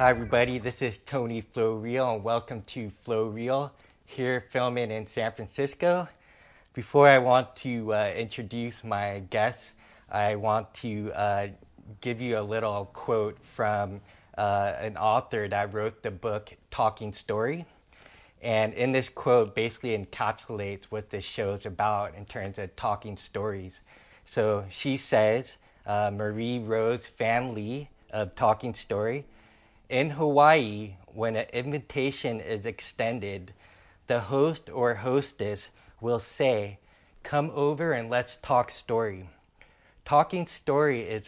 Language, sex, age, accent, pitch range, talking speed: English, male, 20-39, American, 105-130 Hz, 130 wpm